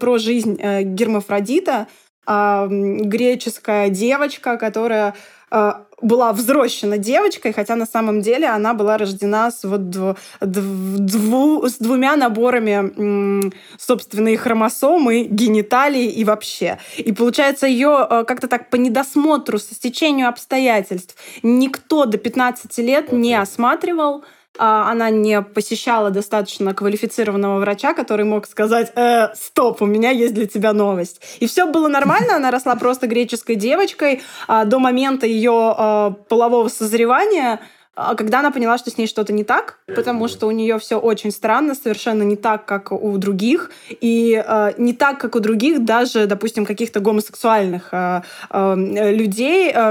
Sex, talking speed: female, 140 wpm